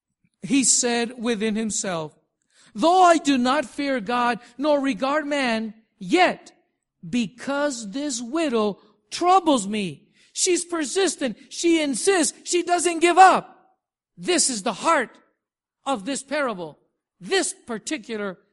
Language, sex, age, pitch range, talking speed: English, male, 50-69, 210-290 Hz, 115 wpm